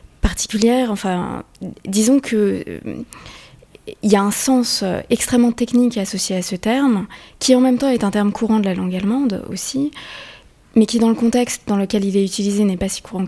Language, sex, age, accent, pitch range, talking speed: French, female, 20-39, French, 195-230 Hz, 190 wpm